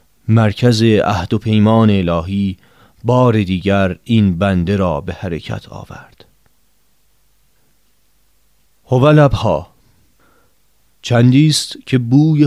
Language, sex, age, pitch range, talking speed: Persian, male, 40-59, 100-120 Hz, 80 wpm